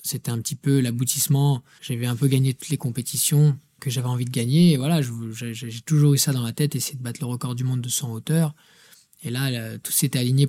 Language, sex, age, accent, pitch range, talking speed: French, male, 20-39, French, 125-150 Hz, 255 wpm